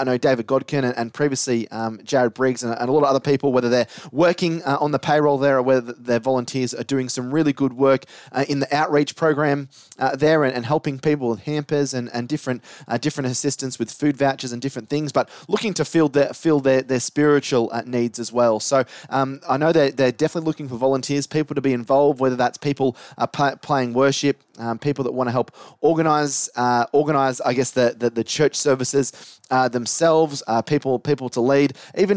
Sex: male